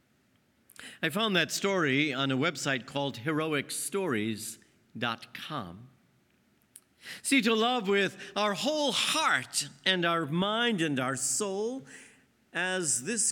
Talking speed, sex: 110 wpm, male